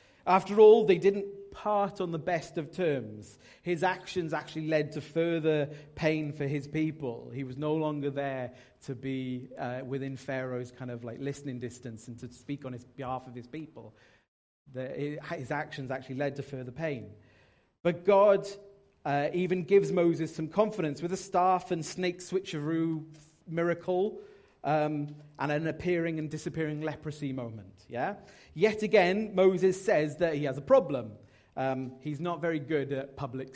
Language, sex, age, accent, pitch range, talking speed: English, male, 40-59, British, 135-175 Hz, 165 wpm